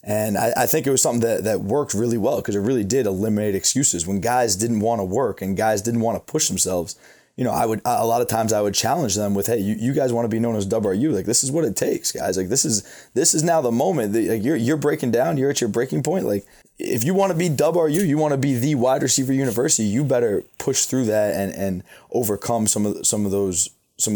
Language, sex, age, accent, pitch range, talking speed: English, male, 20-39, American, 100-115 Hz, 270 wpm